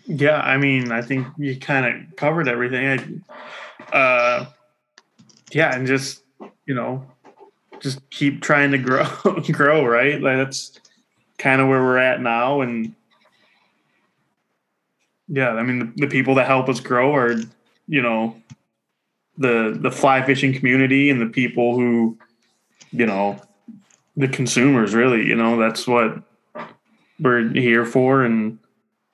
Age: 20-39